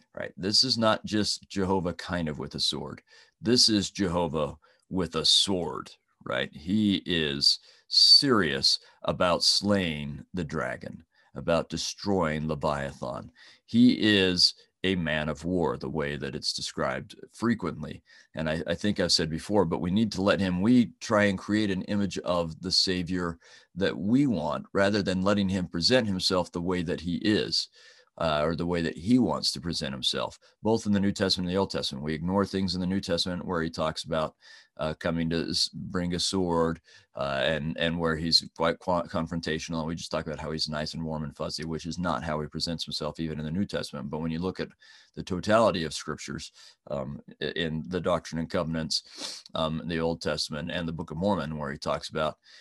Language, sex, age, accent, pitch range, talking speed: English, male, 40-59, American, 80-95 Hz, 195 wpm